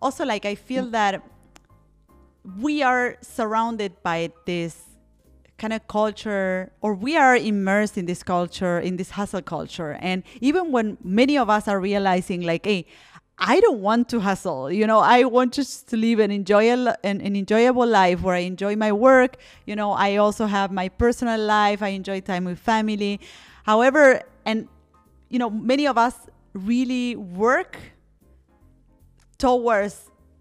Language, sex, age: English, female, 30-49